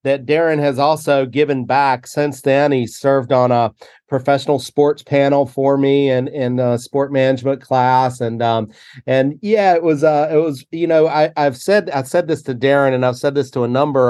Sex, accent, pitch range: male, American, 125-145 Hz